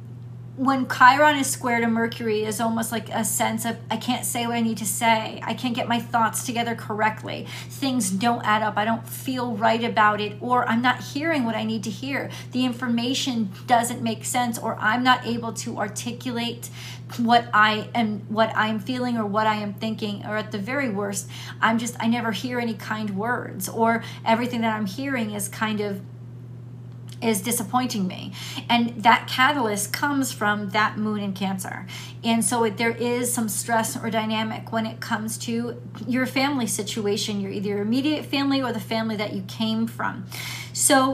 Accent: American